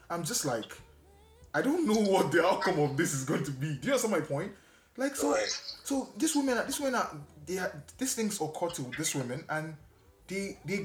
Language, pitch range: English, 125-175 Hz